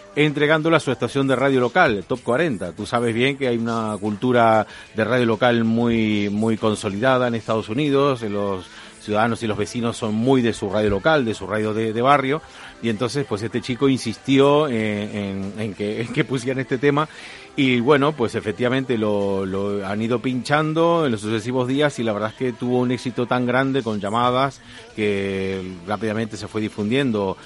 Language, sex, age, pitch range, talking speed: Spanish, male, 40-59, 105-135 Hz, 185 wpm